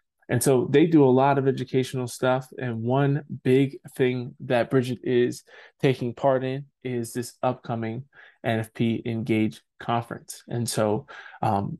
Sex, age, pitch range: male, 20-39, 115-135 Hz